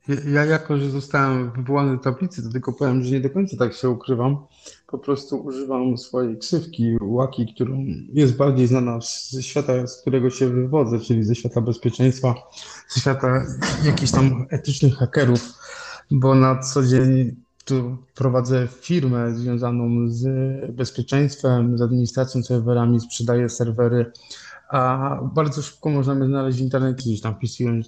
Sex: male